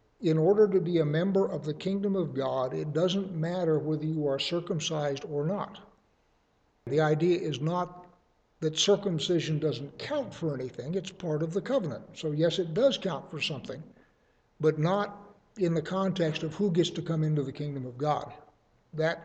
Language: English